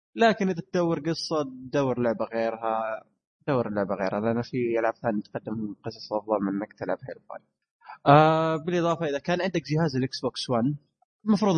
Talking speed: 155 wpm